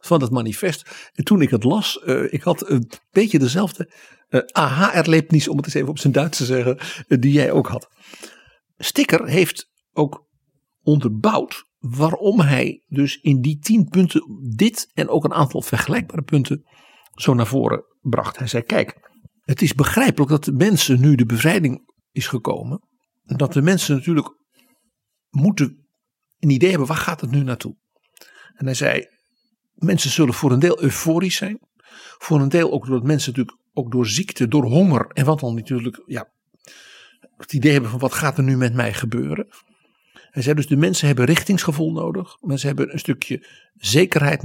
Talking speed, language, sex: 180 wpm, Dutch, male